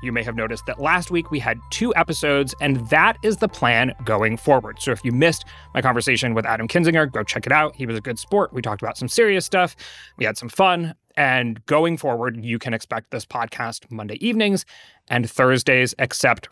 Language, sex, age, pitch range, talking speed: English, male, 30-49, 115-155 Hz, 215 wpm